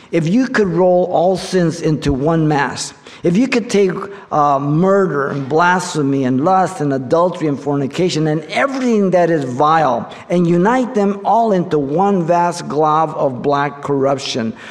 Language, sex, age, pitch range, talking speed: English, male, 50-69, 135-180 Hz, 160 wpm